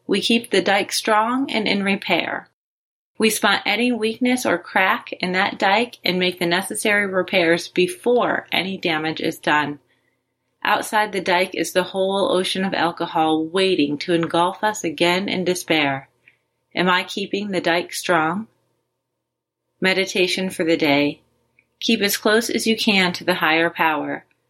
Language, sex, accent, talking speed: English, female, American, 155 wpm